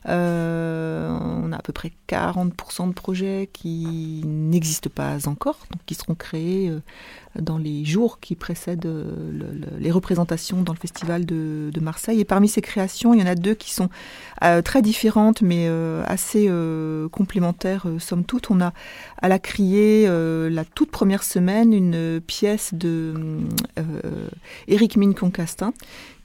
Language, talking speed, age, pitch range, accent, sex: French, 165 wpm, 40-59, 165-200 Hz, French, female